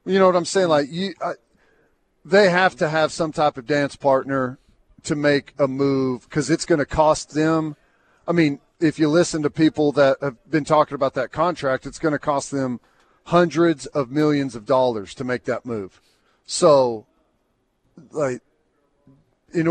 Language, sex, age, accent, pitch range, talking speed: English, male, 40-59, American, 140-165 Hz, 175 wpm